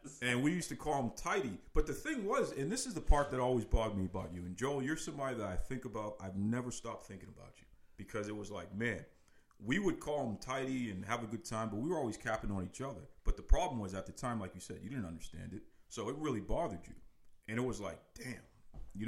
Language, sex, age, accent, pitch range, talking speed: English, male, 40-59, American, 90-115 Hz, 265 wpm